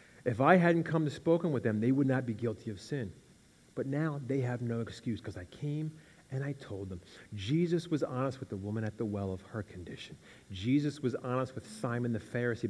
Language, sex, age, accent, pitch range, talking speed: English, male, 30-49, American, 105-145 Hz, 220 wpm